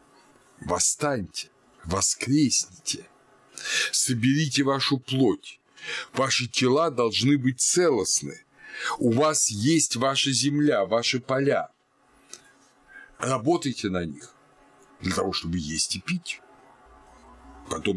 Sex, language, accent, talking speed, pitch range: male, Russian, native, 90 wpm, 105-140 Hz